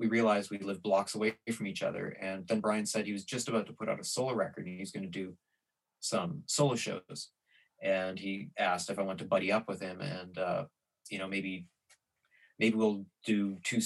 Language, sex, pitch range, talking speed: English, male, 95-115 Hz, 220 wpm